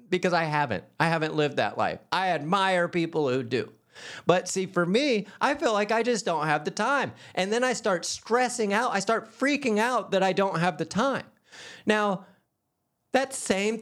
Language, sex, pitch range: English, male, 155-215 Hz